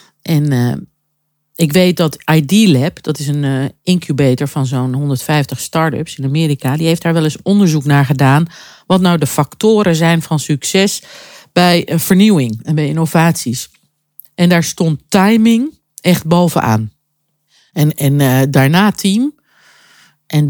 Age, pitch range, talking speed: 50-69, 145-180 Hz, 145 wpm